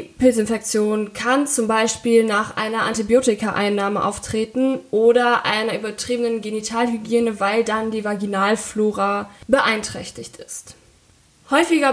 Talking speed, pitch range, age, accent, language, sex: 95 wpm, 215-255 Hz, 20-39, German, German, female